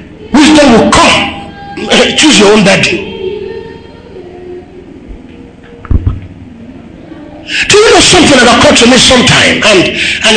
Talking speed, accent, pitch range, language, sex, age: 105 wpm, Nigerian, 235-330 Hz, English, male, 50-69